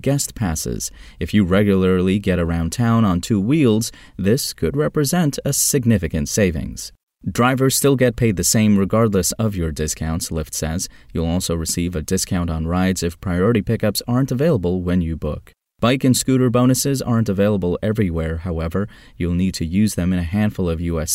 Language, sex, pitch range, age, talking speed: English, male, 85-120 Hz, 30-49, 175 wpm